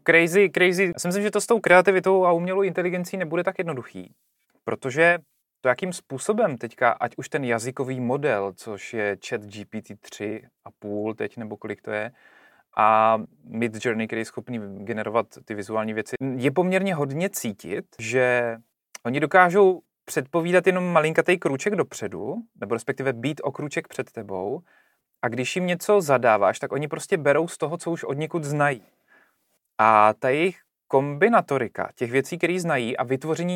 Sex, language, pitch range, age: male, Czech, 115-175 Hz, 30-49